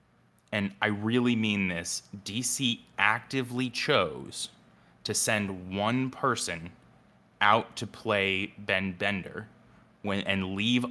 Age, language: 20-39, English